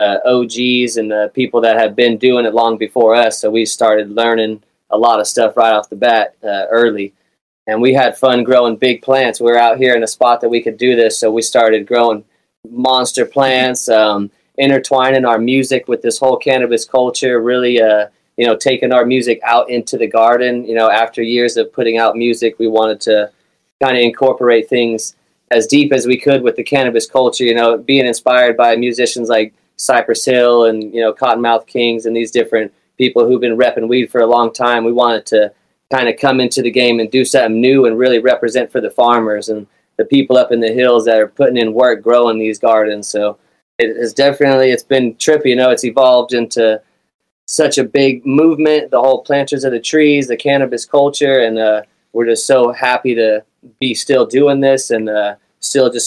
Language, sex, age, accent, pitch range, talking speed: English, male, 20-39, American, 115-130 Hz, 210 wpm